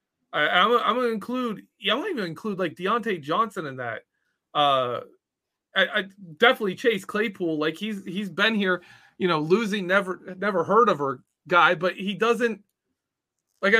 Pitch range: 150-205 Hz